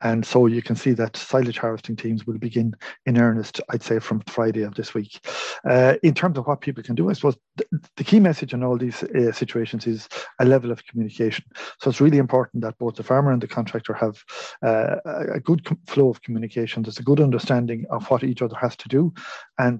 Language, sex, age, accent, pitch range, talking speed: English, male, 50-69, Irish, 115-135 Hz, 220 wpm